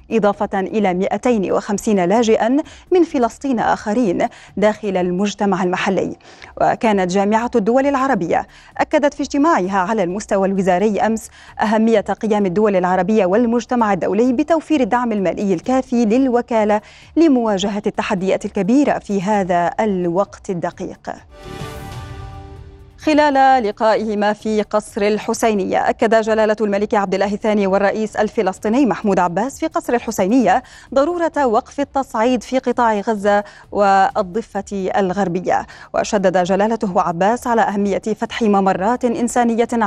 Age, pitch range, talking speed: 30-49, 195-245 Hz, 110 wpm